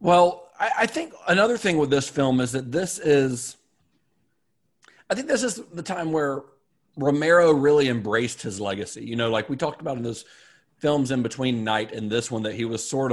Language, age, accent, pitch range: English, 40-59, American, 120-165 Hz